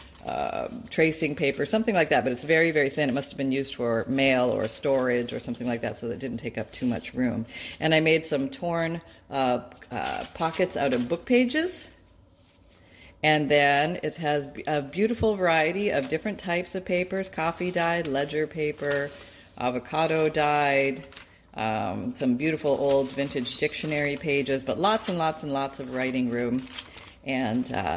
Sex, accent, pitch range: female, American, 125-160 Hz